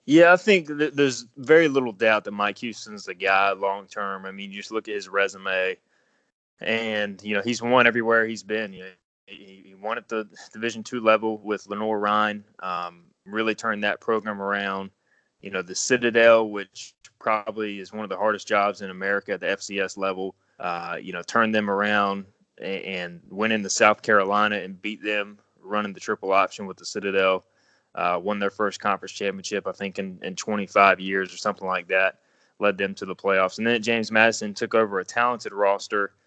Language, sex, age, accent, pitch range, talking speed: English, male, 20-39, American, 100-115 Hz, 195 wpm